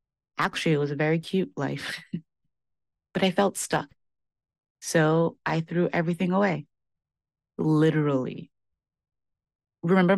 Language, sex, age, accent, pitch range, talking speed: English, female, 30-49, American, 145-175 Hz, 105 wpm